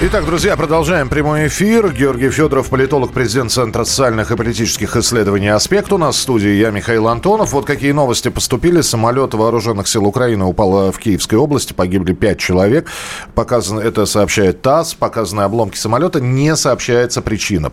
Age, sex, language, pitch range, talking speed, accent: 40-59, male, Russian, 90-135 Hz, 160 wpm, native